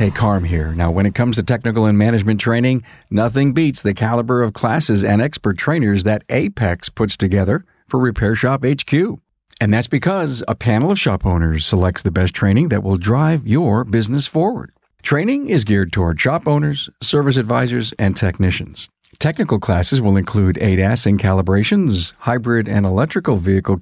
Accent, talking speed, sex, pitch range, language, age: American, 170 wpm, male, 100-130 Hz, English, 50-69